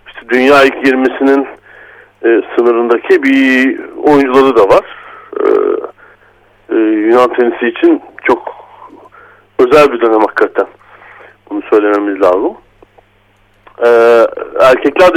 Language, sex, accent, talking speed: Turkish, male, native, 95 wpm